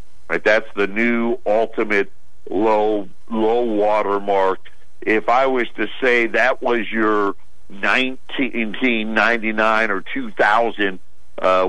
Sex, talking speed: male, 110 wpm